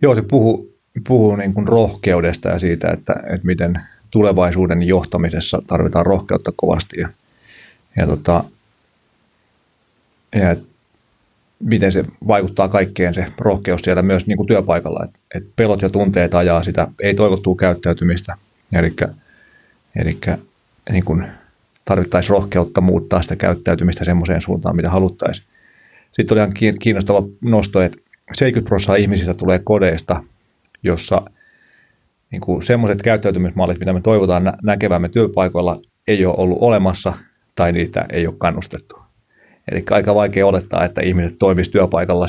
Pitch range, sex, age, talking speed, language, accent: 90-105 Hz, male, 30-49, 130 wpm, Finnish, native